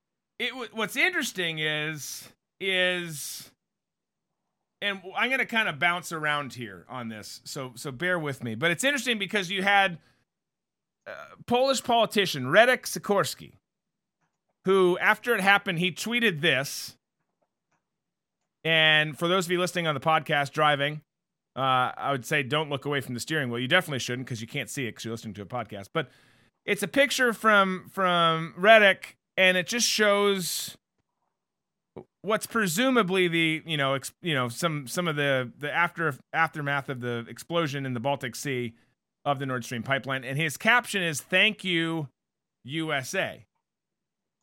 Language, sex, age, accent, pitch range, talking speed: English, male, 30-49, American, 140-200 Hz, 160 wpm